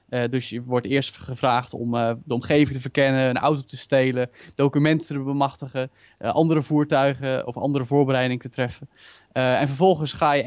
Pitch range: 135-155 Hz